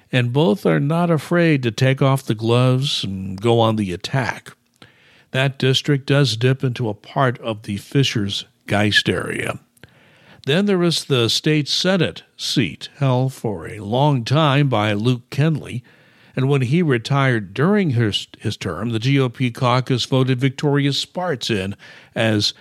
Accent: American